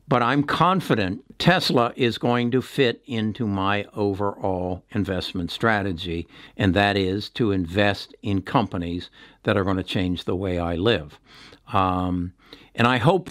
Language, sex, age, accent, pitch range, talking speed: English, male, 60-79, American, 100-125 Hz, 150 wpm